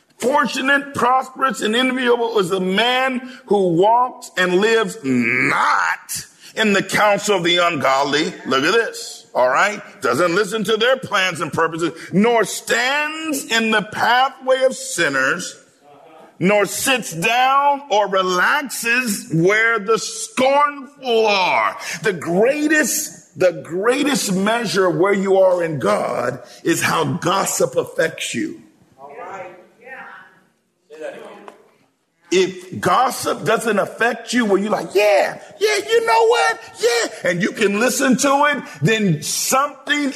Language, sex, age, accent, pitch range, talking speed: English, male, 50-69, American, 200-290 Hz, 125 wpm